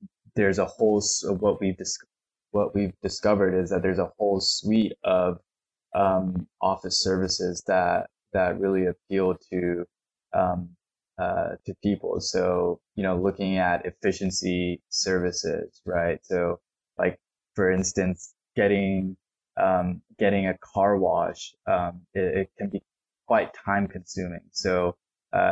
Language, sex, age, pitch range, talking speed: English, male, 20-39, 90-100 Hz, 130 wpm